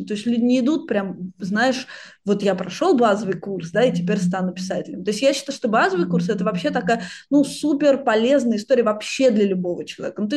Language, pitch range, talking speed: Russian, 200-260 Hz, 220 wpm